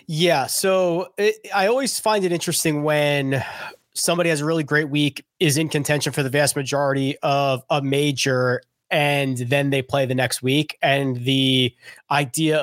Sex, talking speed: male, 165 wpm